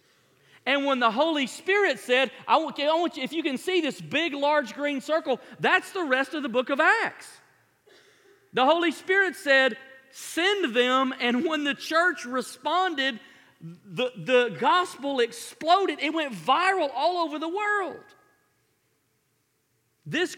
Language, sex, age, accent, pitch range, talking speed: English, male, 40-59, American, 235-310 Hz, 145 wpm